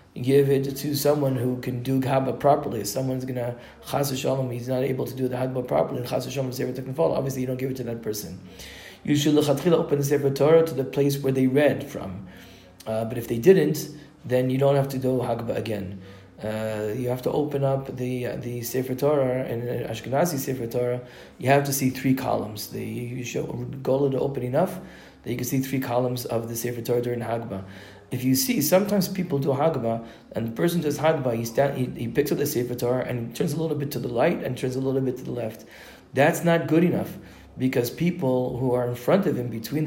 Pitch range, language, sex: 125-145 Hz, English, male